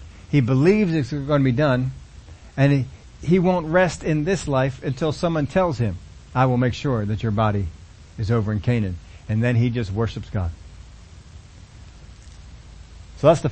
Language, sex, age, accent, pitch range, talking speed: English, male, 40-59, American, 95-155 Hz, 175 wpm